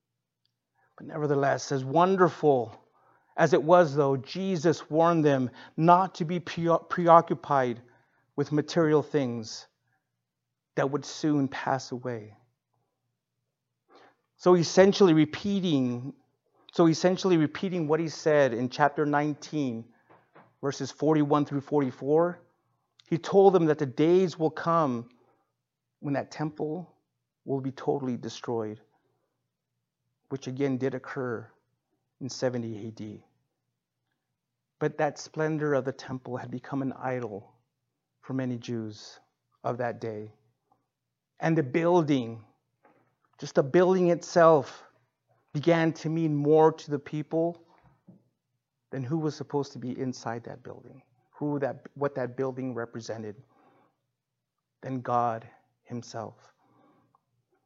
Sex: male